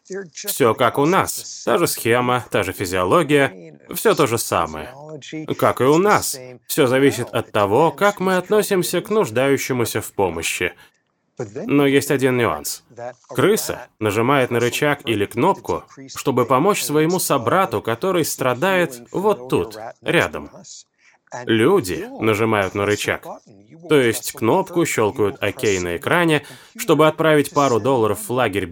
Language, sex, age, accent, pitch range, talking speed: Russian, male, 20-39, native, 125-180 Hz, 135 wpm